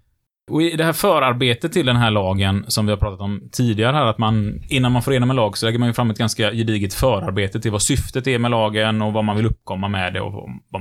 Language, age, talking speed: Swedish, 20-39, 255 wpm